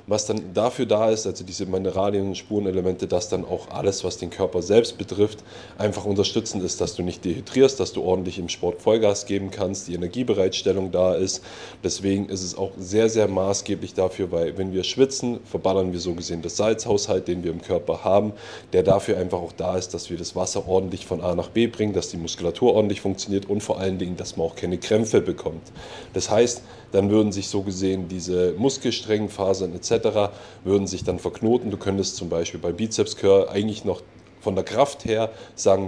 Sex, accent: male, German